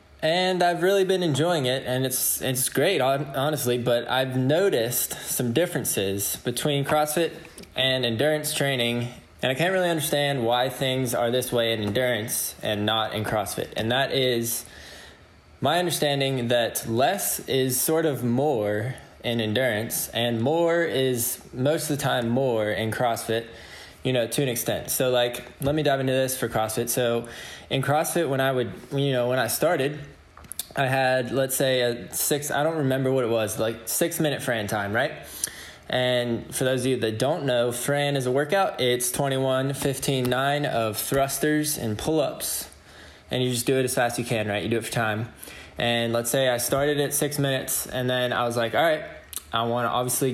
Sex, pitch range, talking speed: male, 115-140 Hz, 190 wpm